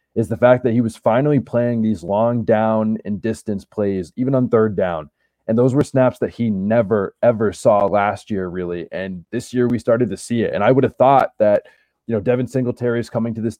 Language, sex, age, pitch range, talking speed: English, male, 20-39, 110-130 Hz, 230 wpm